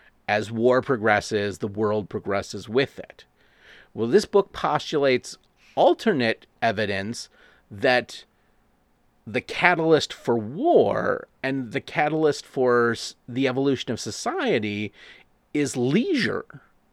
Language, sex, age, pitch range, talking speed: English, male, 30-49, 115-150 Hz, 105 wpm